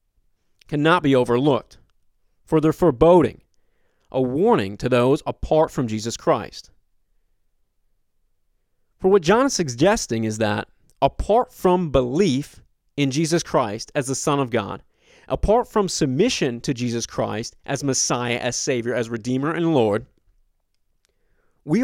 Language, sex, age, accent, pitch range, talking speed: English, male, 30-49, American, 110-175 Hz, 130 wpm